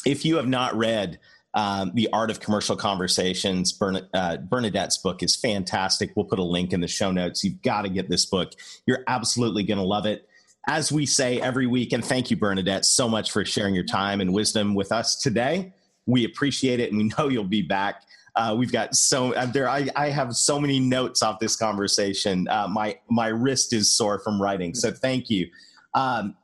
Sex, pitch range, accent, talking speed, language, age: male, 100-135 Hz, American, 210 wpm, English, 40-59